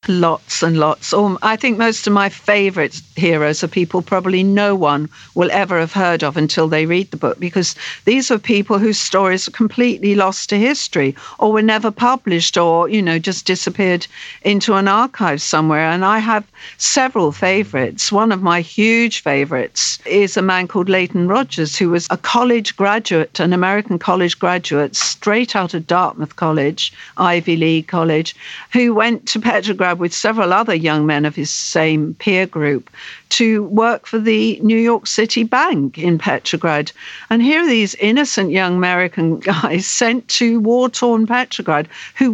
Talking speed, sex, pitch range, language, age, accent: 170 wpm, female, 165-220 Hz, English, 50-69, British